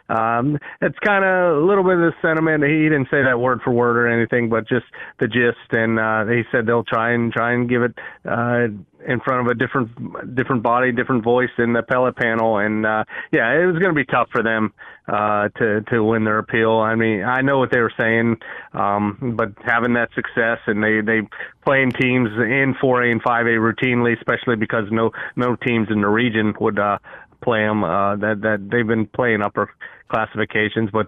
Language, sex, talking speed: English, male, 210 wpm